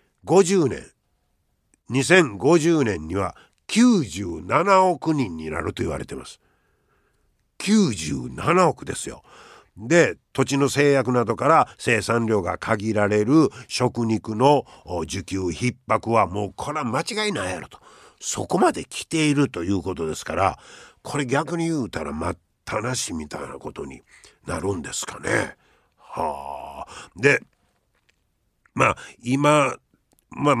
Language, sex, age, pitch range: Japanese, male, 50-69, 95-145 Hz